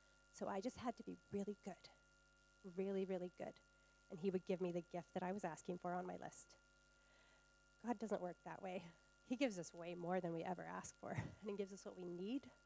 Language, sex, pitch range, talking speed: English, female, 140-210 Hz, 230 wpm